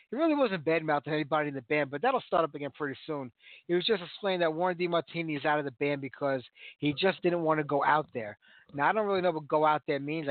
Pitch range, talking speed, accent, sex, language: 145-180 Hz, 275 wpm, American, male, English